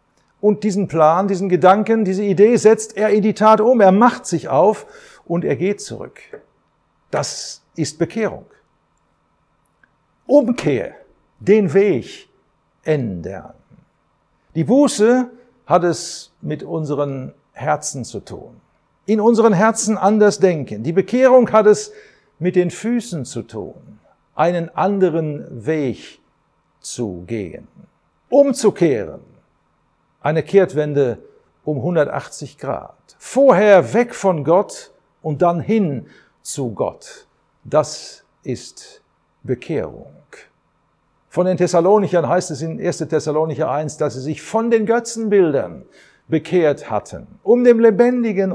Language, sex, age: German, male, 50-69